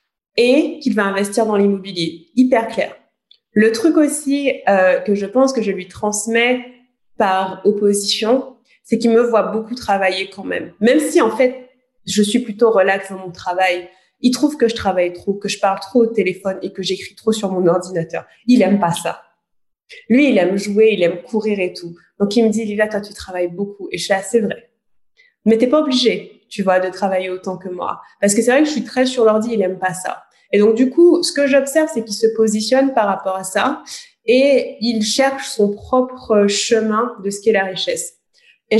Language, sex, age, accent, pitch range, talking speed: French, female, 20-39, French, 190-250 Hz, 215 wpm